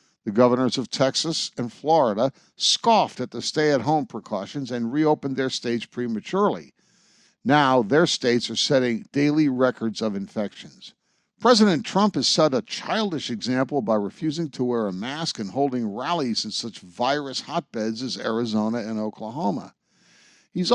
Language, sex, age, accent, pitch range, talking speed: English, male, 60-79, American, 115-170 Hz, 145 wpm